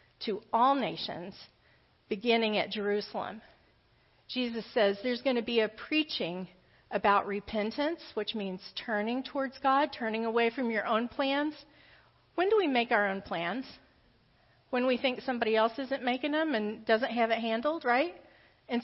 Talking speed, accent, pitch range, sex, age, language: 155 wpm, American, 210-250 Hz, female, 40-59, English